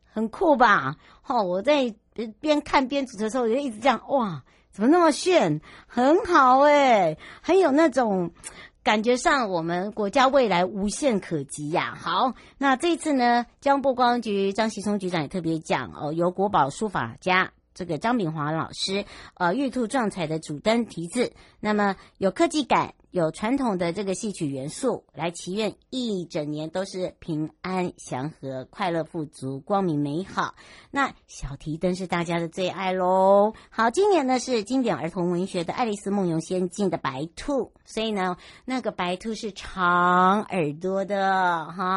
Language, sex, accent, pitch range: Chinese, male, American, 175-240 Hz